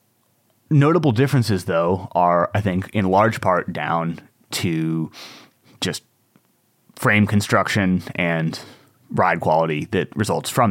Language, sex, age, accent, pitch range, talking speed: English, male, 30-49, American, 90-110 Hz, 110 wpm